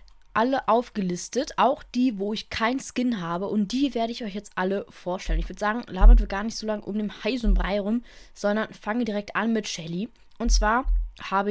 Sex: female